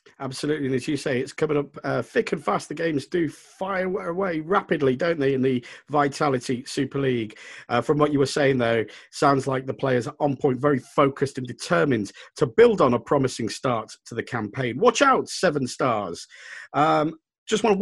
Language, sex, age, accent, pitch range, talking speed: English, male, 40-59, British, 140-175 Hz, 200 wpm